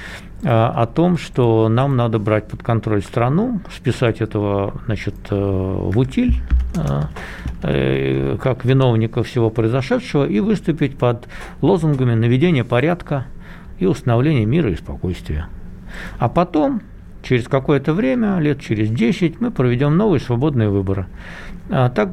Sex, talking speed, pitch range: male, 115 wpm, 105-135 Hz